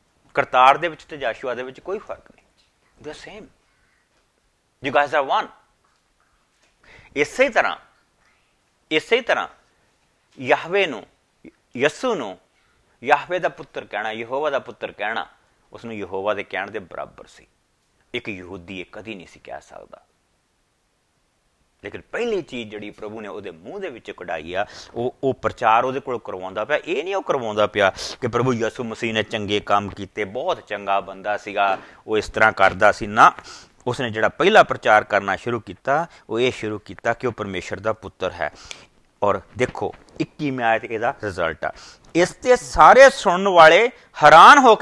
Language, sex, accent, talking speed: English, male, Indian, 115 wpm